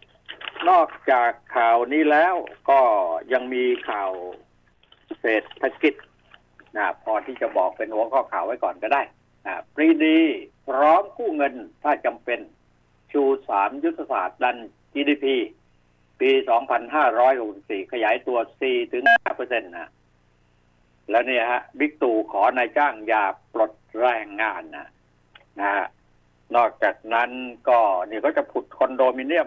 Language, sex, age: Thai, male, 60-79